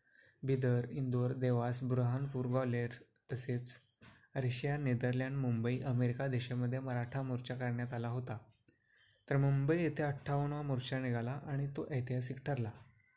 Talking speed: 125 wpm